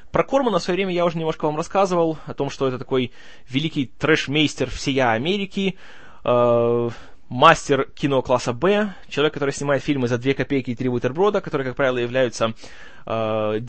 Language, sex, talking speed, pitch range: Russian, male, 170 wpm, 120-160 Hz